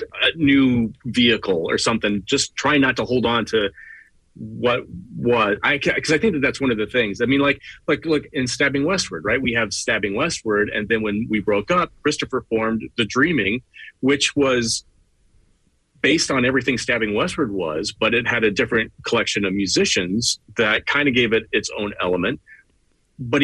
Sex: male